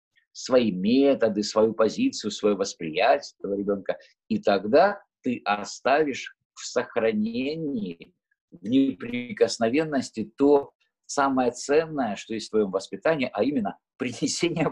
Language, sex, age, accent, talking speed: Russian, male, 50-69, native, 110 wpm